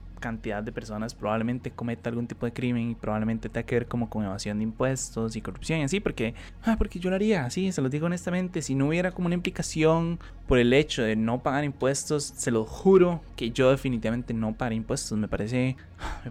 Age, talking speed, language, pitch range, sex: 20-39, 215 wpm, Spanish, 115-145 Hz, male